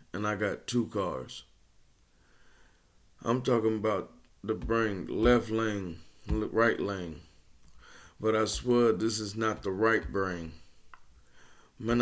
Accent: American